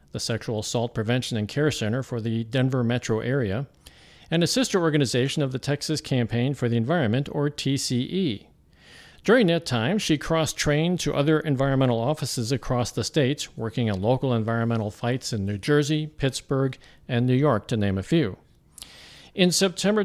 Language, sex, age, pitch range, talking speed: English, male, 50-69, 120-165 Hz, 165 wpm